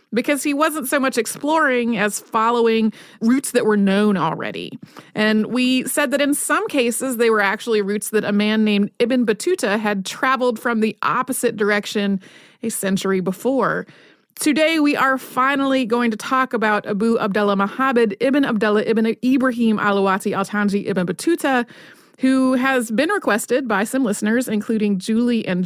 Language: English